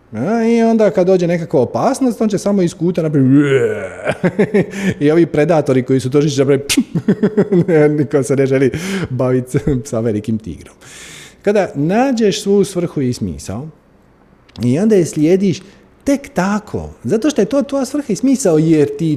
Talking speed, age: 155 wpm, 30-49